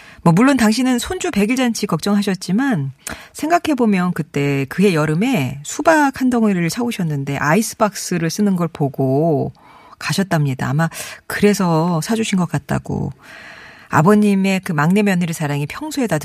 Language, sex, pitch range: Korean, female, 155-215 Hz